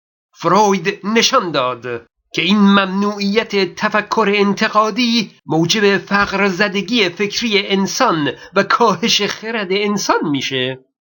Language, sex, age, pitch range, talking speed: Persian, male, 50-69, 195-230 Hz, 100 wpm